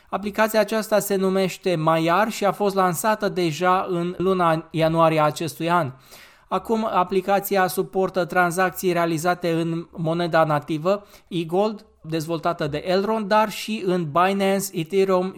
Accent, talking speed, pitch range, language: native, 125 wpm, 170-195 Hz, Romanian